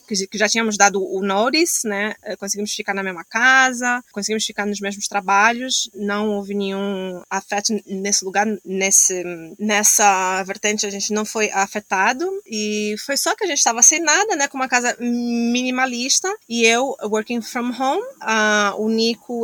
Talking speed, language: 165 wpm, Portuguese